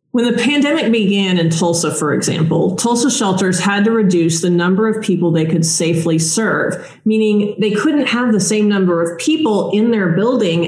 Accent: American